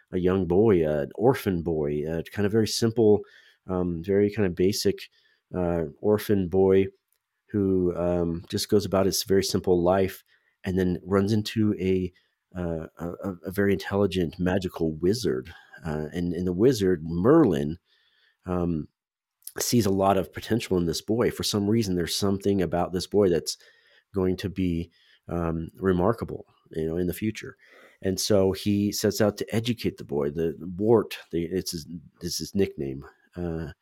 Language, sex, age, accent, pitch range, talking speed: English, male, 40-59, American, 85-100 Hz, 165 wpm